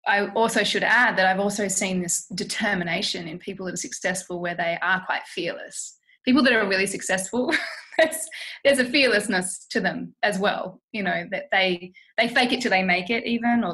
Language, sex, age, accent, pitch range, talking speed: English, female, 20-39, Australian, 185-235 Hz, 200 wpm